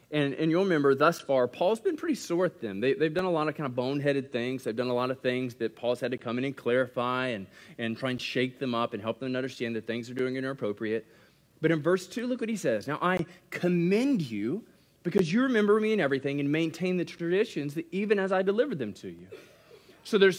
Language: English